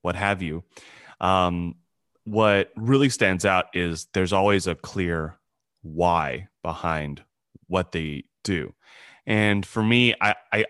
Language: English